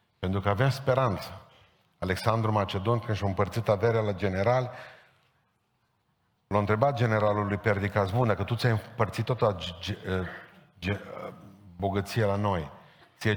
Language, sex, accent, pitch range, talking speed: Romanian, male, native, 100-115 Hz, 135 wpm